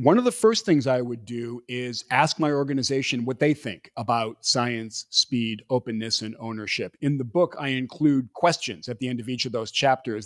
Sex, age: male, 40-59